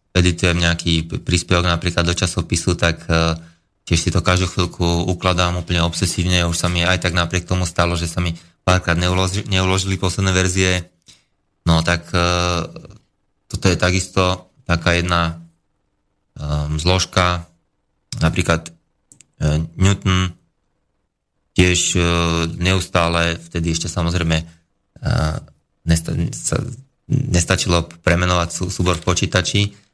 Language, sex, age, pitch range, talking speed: Slovak, male, 20-39, 85-95 Hz, 100 wpm